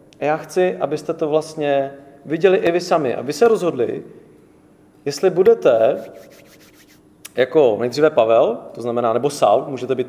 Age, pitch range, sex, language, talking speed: 40-59, 130-160 Hz, male, English, 145 wpm